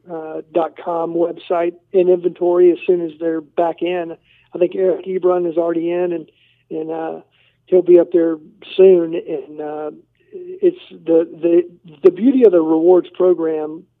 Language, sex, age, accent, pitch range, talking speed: English, male, 50-69, American, 170-195 Hz, 165 wpm